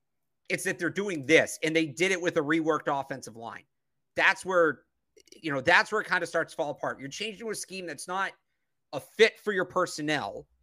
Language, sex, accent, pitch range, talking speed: English, male, American, 150-185 Hz, 215 wpm